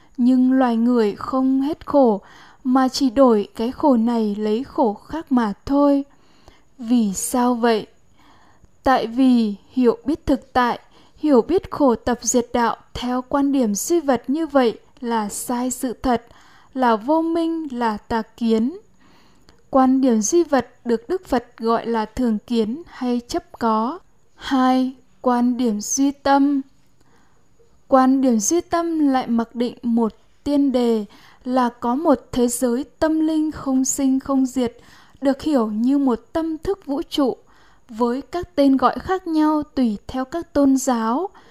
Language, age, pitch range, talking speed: Vietnamese, 10-29, 235-280 Hz, 155 wpm